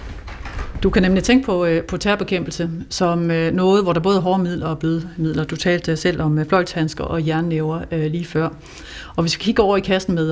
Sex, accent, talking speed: female, native, 205 wpm